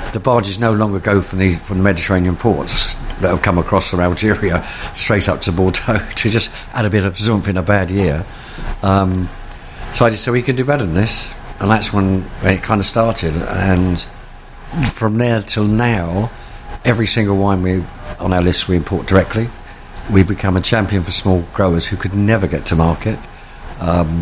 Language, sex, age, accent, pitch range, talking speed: English, male, 50-69, British, 90-110 Hz, 200 wpm